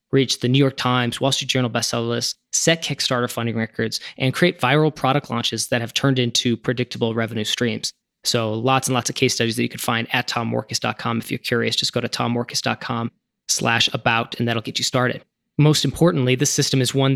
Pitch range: 120-140 Hz